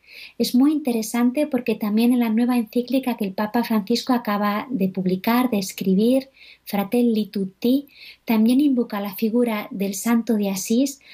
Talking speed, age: 150 wpm, 20-39